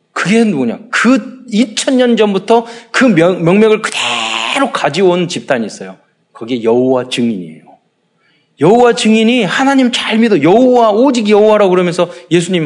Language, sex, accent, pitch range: Korean, male, native, 150-230 Hz